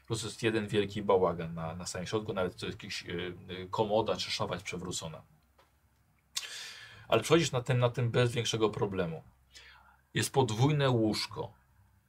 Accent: native